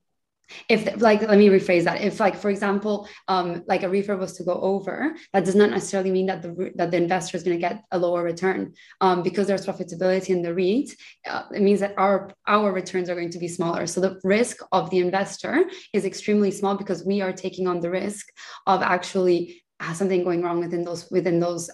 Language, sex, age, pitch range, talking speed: English, female, 20-39, 175-195 Hz, 220 wpm